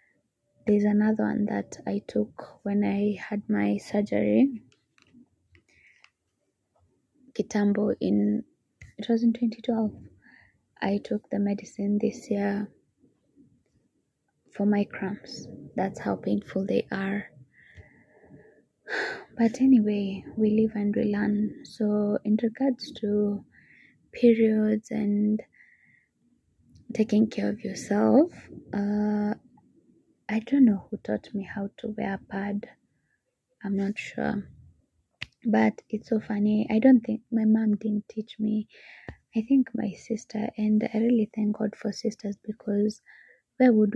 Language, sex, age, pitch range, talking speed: English, female, 20-39, 205-225 Hz, 120 wpm